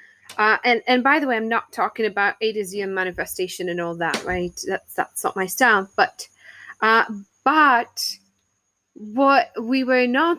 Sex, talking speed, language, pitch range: female, 180 wpm, English, 225-280 Hz